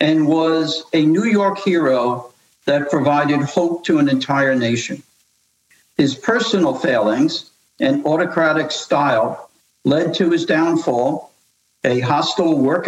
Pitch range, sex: 135-165 Hz, male